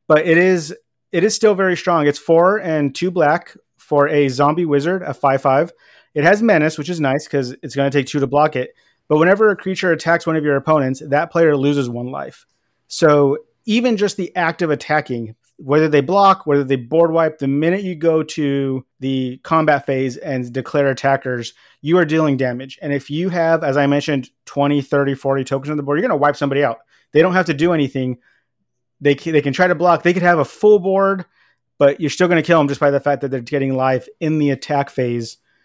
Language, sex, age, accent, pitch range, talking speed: English, male, 30-49, American, 135-170 Hz, 225 wpm